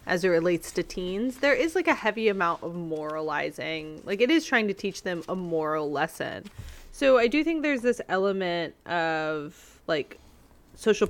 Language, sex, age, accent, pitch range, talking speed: English, female, 20-39, American, 165-210 Hz, 180 wpm